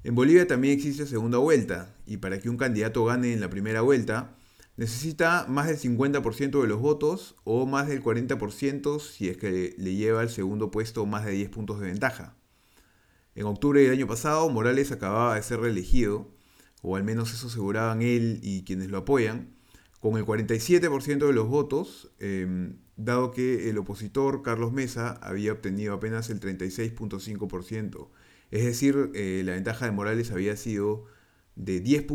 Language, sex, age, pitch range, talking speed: Spanish, male, 30-49, 100-130 Hz, 165 wpm